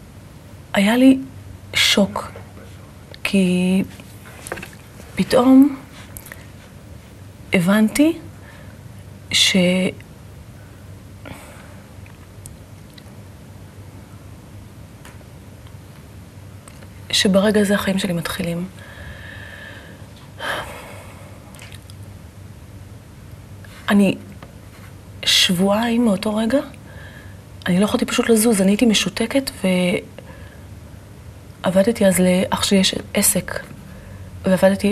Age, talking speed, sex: 30-49, 55 wpm, female